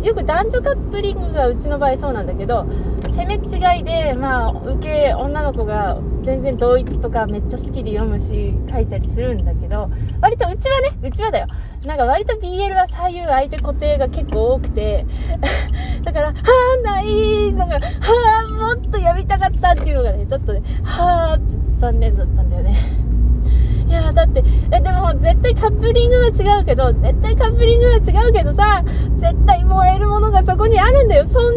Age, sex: 20-39, female